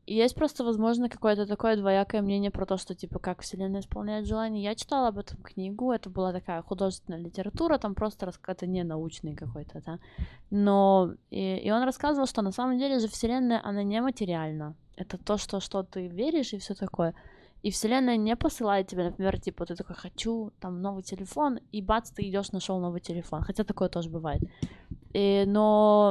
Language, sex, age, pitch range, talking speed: Russian, female, 20-39, 195-220 Hz, 190 wpm